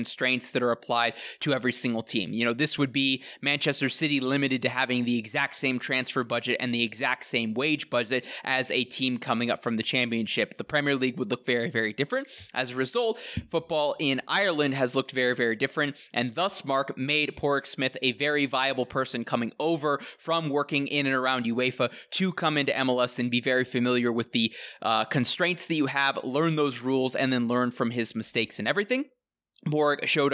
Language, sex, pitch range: English, male, 125-145 Hz